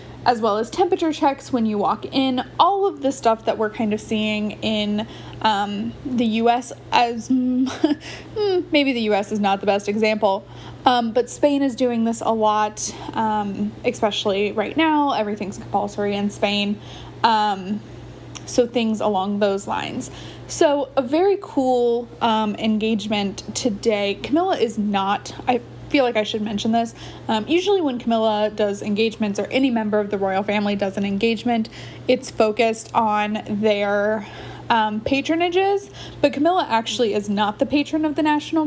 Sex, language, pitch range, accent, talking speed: female, English, 210-265 Hz, American, 160 wpm